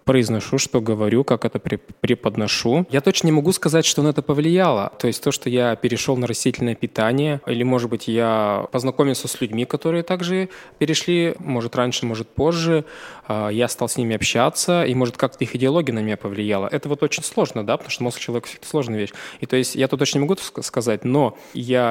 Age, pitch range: 20-39, 115-145 Hz